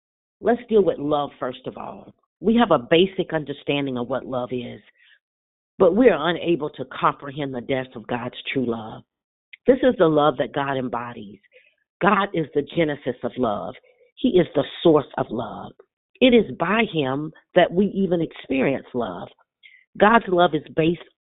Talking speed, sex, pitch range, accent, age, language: 170 wpm, female, 135-180 Hz, American, 40-59, English